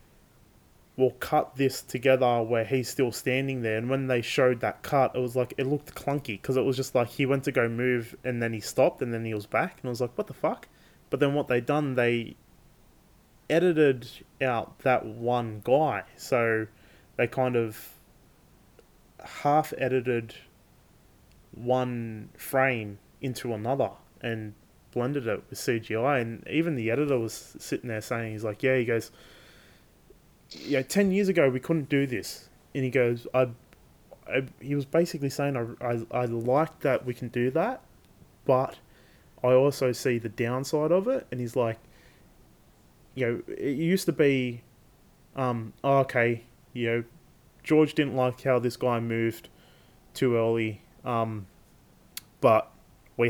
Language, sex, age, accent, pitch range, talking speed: English, male, 20-39, Australian, 115-135 Hz, 165 wpm